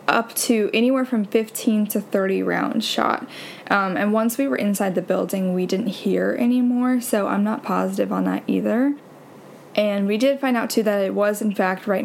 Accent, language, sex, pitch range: American, English, female, 190-220 Hz